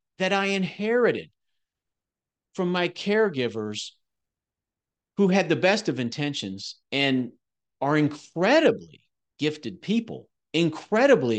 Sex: male